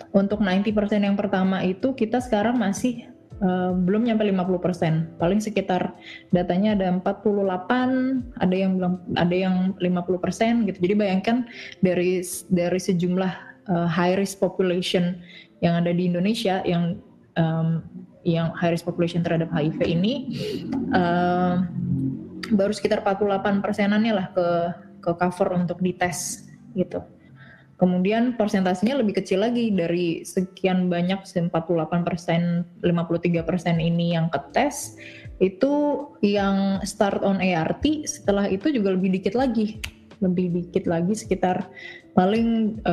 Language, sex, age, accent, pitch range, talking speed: Indonesian, female, 20-39, native, 175-205 Hz, 125 wpm